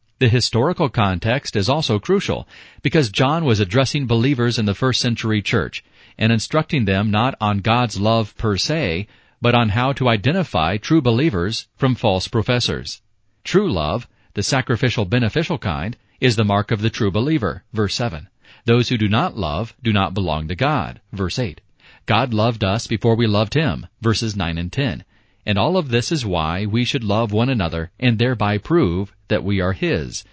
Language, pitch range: English, 100-125 Hz